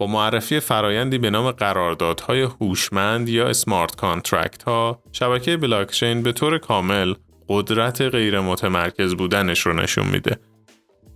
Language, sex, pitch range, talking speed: Persian, male, 95-125 Hz, 125 wpm